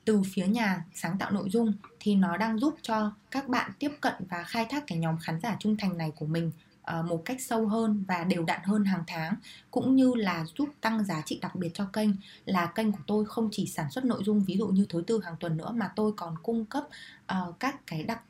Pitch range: 180-220 Hz